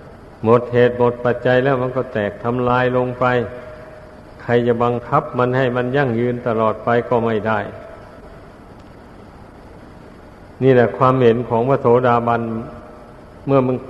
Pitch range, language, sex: 115-135 Hz, Thai, male